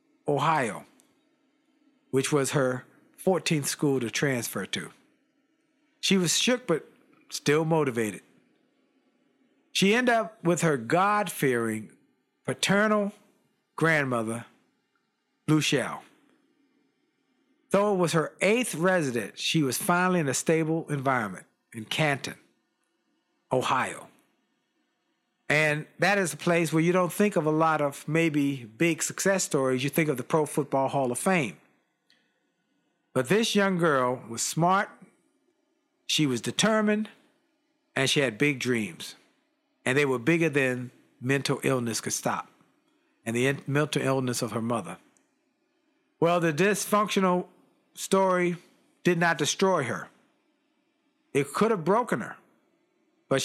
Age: 50-69